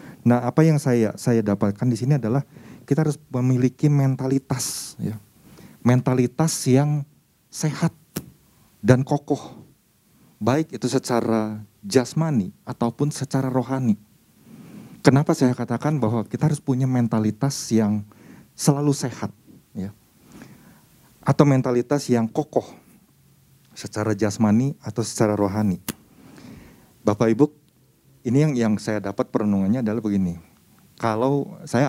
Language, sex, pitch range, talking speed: Indonesian, male, 110-135 Hz, 110 wpm